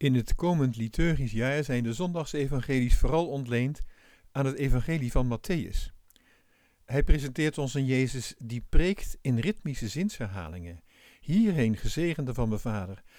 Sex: male